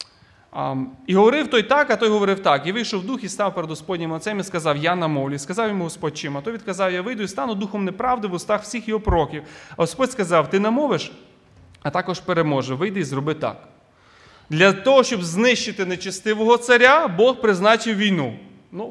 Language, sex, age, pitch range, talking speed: Ukrainian, male, 30-49, 145-195 Hz, 200 wpm